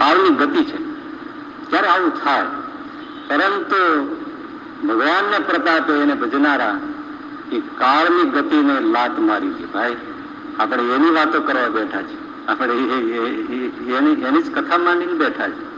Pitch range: 300-310 Hz